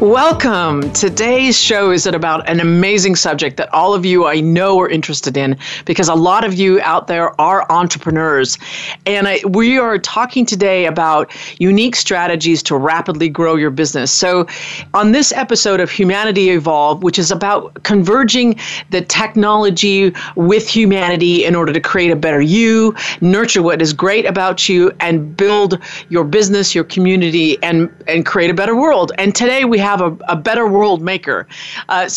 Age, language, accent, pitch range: 40-59, English, American, 165-200 Hz